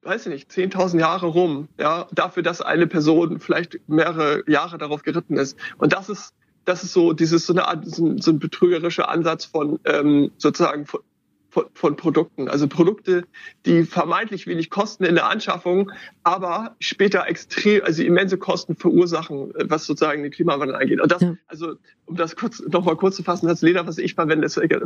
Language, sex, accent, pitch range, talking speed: German, male, German, 160-180 Hz, 185 wpm